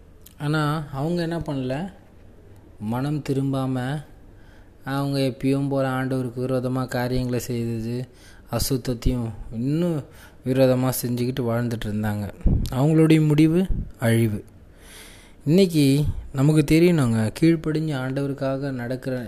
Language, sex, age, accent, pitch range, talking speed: Tamil, male, 20-39, native, 105-135 Hz, 85 wpm